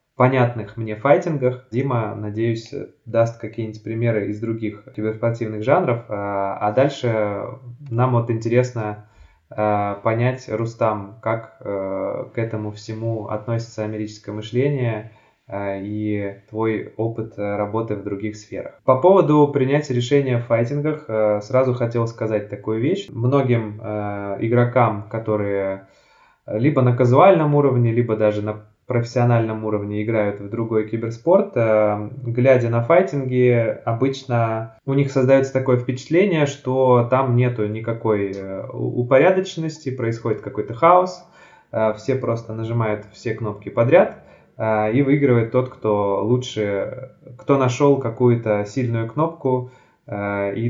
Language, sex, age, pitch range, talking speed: Russian, male, 20-39, 105-125 Hz, 110 wpm